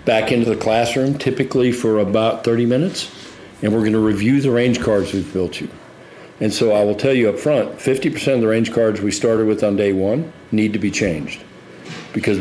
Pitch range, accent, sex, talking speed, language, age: 95-110 Hz, American, male, 210 wpm, English, 50-69